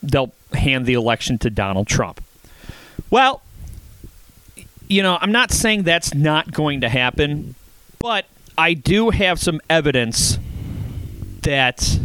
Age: 30-49